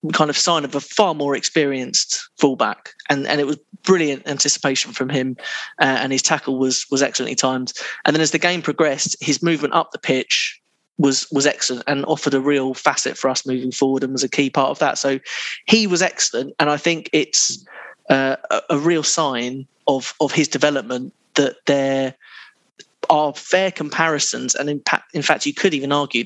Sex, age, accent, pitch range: male, 20-39, British, 130-150 Hz